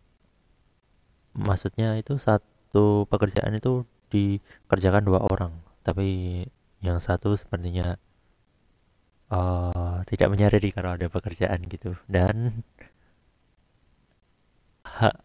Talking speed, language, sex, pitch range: 85 wpm, Indonesian, male, 90-105 Hz